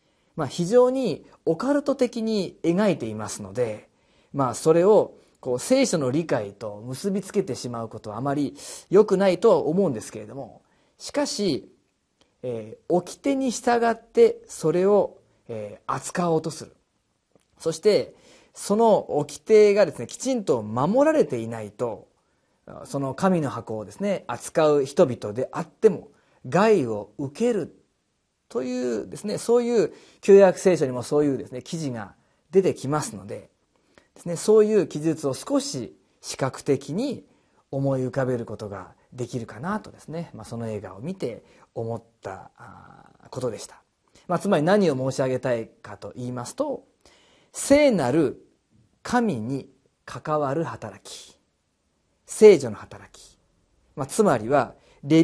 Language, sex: Japanese, male